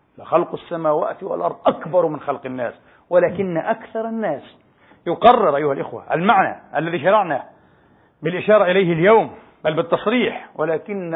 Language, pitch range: Arabic, 180-225 Hz